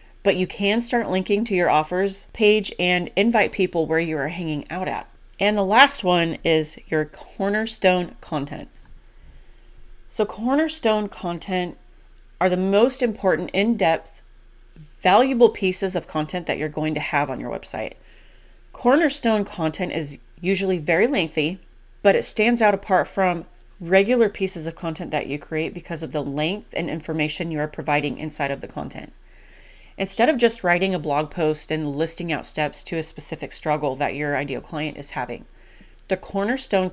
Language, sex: English, female